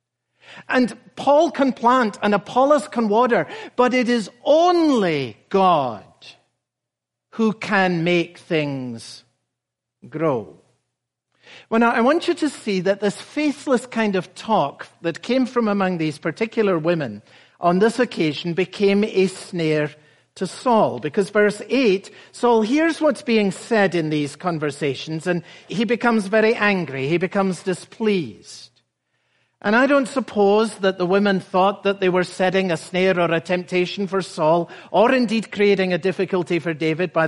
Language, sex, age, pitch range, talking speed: English, male, 60-79, 175-230 Hz, 150 wpm